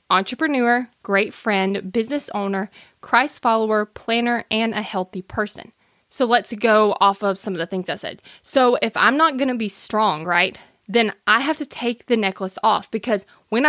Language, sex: English, female